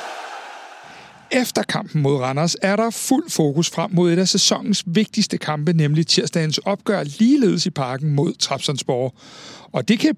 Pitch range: 145-200 Hz